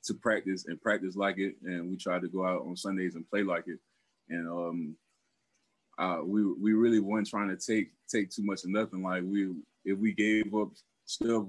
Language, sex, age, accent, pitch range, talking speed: English, male, 20-39, American, 95-110 Hz, 210 wpm